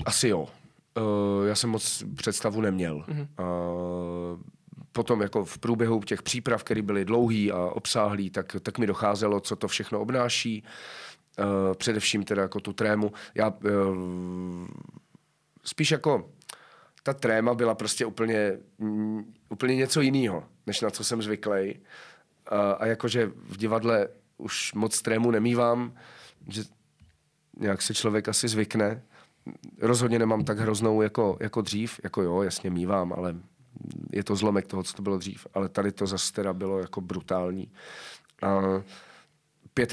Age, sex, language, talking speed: 30-49, male, Czech, 135 wpm